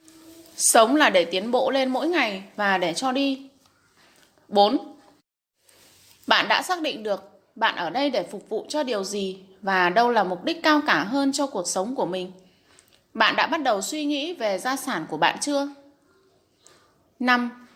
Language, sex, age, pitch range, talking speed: Vietnamese, female, 20-39, 205-290 Hz, 180 wpm